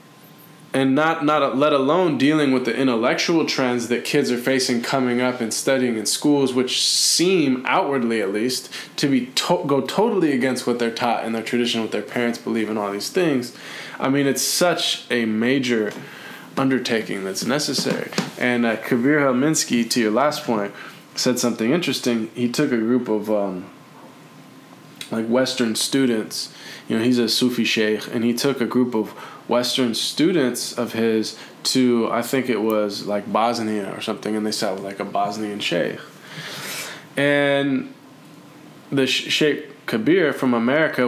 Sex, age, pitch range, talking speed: male, 20-39, 115-140 Hz, 165 wpm